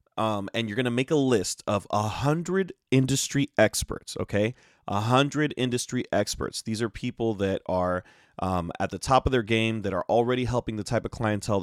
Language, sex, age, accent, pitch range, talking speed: English, male, 30-49, American, 95-120 Hz, 195 wpm